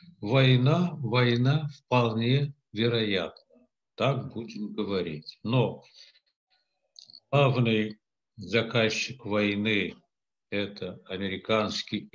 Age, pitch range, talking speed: 60-79, 110-155 Hz, 65 wpm